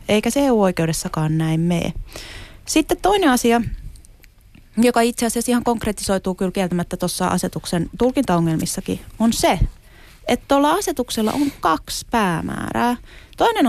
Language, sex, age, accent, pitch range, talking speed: Finnish, female, 20-39, native, 175-245 Hz, 120 wpm